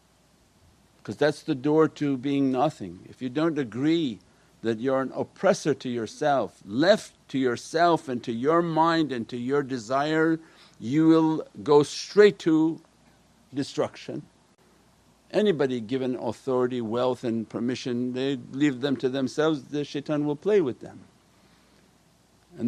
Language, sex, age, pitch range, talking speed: English, male, 60-79, 125-165 Hz, 140 wpm